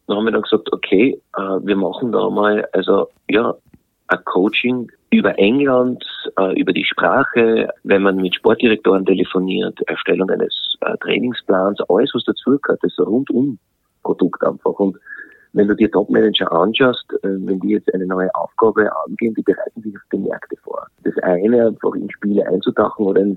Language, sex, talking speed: German, male, 160 wpm